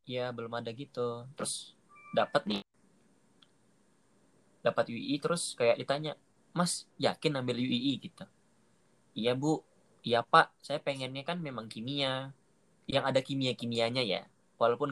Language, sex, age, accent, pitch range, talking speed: Indonesian, male, 20-39, native, 120-150 Hz, 125 wpm